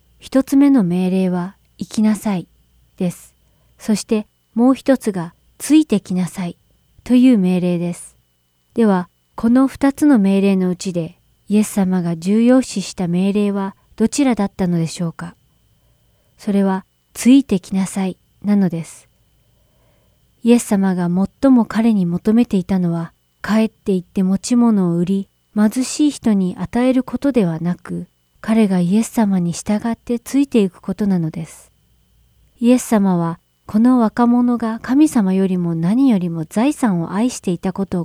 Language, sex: Japanese, female